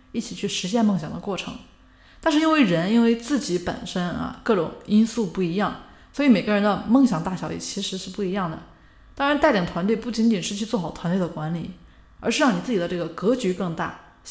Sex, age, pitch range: female, 20-39, 175-240 Hz